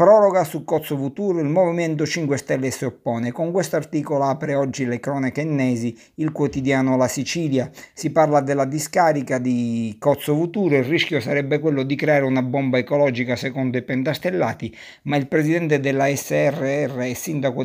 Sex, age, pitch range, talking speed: male, 50-69, 130-155 Hz, 165 wpm